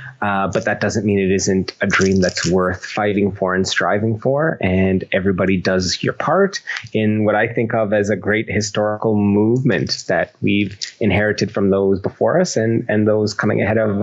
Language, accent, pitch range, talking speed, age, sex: English, American, 100-120 Hz, 190 wpm, 30-49, male